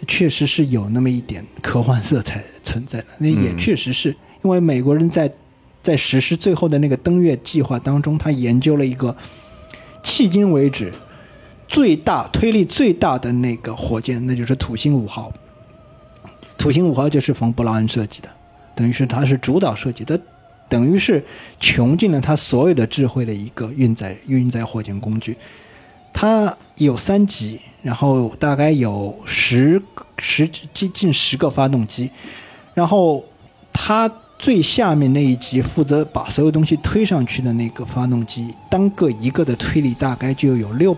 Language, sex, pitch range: Chinese, male, 120-155 Hz